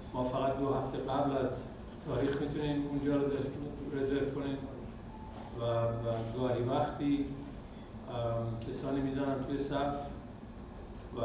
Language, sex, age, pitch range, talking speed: Persian, male, 50-69, 120-140 Hz, 110 wpm